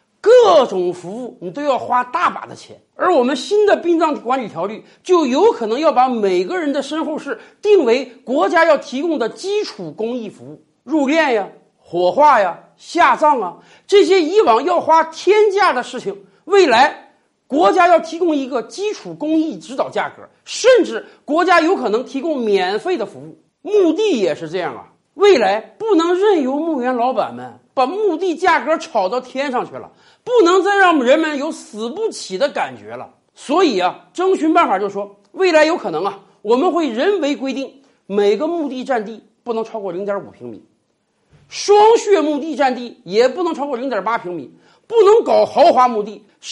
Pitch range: 245-370 Hz